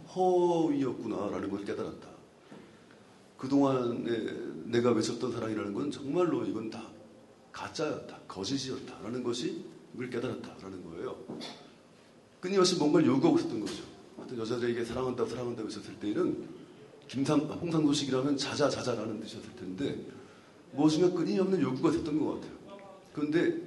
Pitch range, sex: 120-160 Hz, male